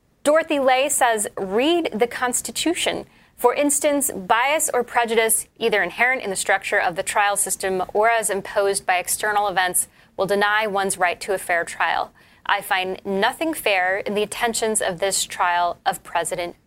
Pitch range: 190-225 Hz